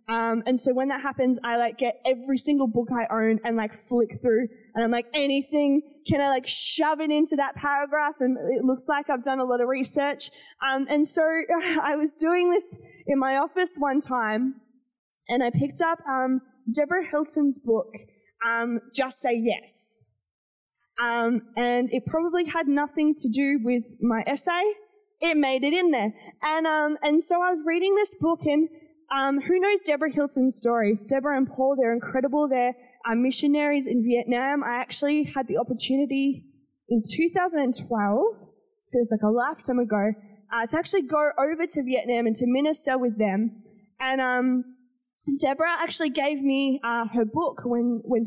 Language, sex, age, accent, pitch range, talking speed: English, female, 20-39, Australian, 240-310 Hz, 175 wpm